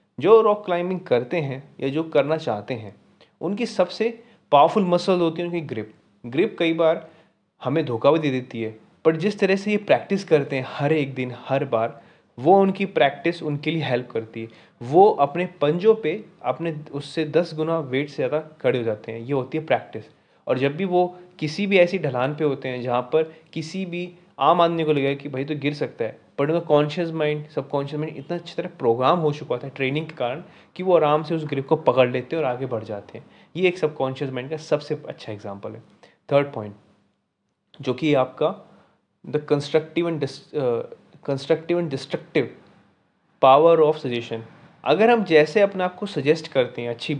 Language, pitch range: Hindi, 130-170 Hz